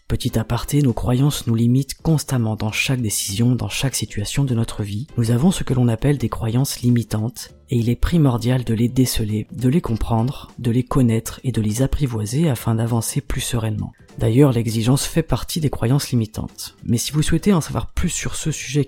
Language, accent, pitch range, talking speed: French, French, 115-140 Hz, 200 wpm